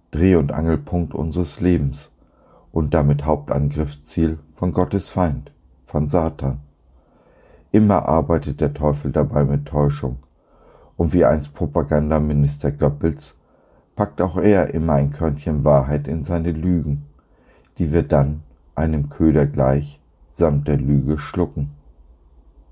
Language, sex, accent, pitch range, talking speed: German, male, German, 70-85 Hz, 120 wpm